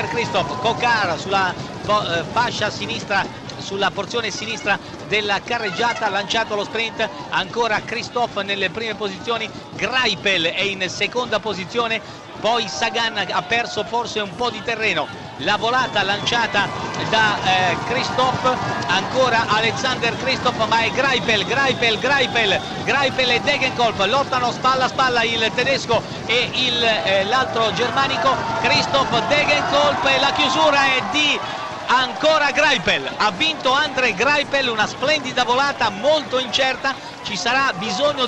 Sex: male